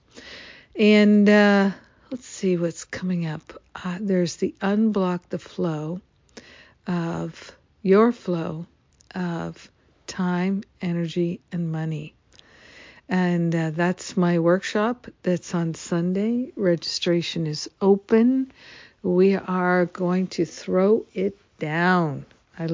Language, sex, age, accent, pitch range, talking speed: English, female, 50-69, American, 165-195 Hz, 105 wpm